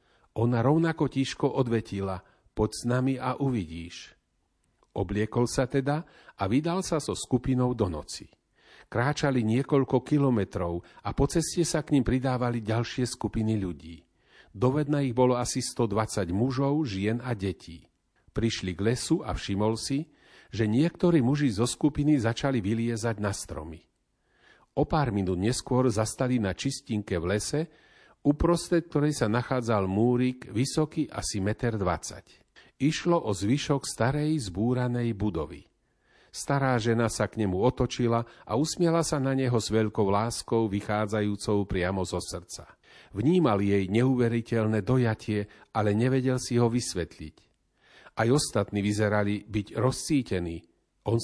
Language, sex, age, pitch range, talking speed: Slovak, male, 40-59, 105-135 Hz, 130 wpm